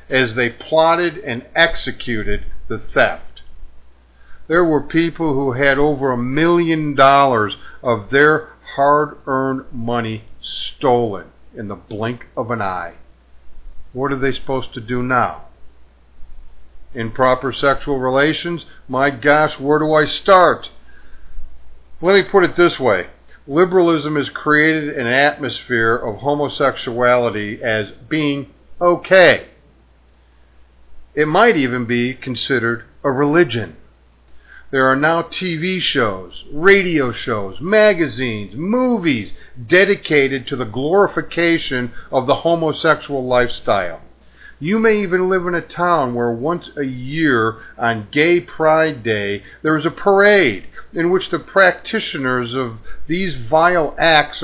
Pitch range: 115-165 Hz